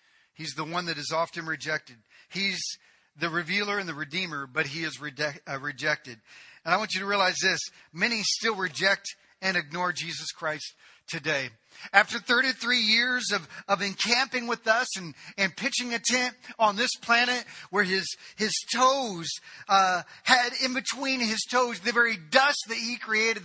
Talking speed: 165 wpm